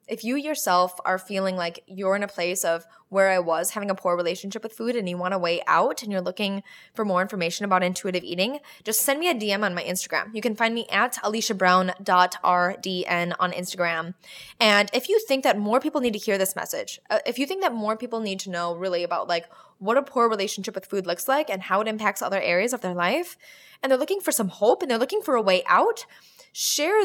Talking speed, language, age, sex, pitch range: 235 wpm, English, 10-29, female, 180-235 Hz